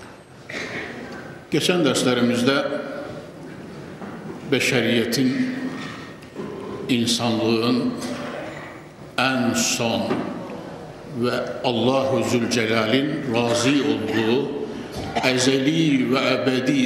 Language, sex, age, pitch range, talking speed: Turkish, male, 60-79, 125-160 Hz, 55 wpm